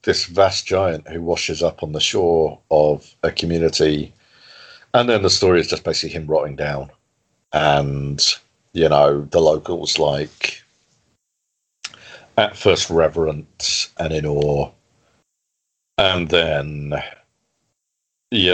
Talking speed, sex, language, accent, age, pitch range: 120 wpm, male, English, British, 40-59, 75-95 Hz